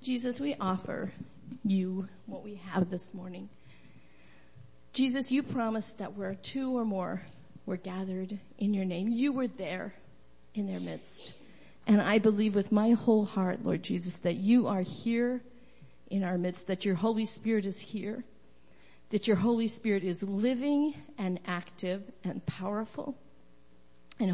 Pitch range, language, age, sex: 175-220 Hz, English, 40-59, female